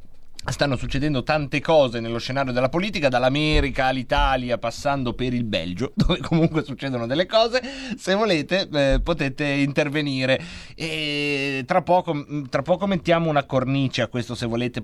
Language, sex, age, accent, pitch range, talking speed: Italian, male, 30-49, native, 120-175 Hz, 145 wpm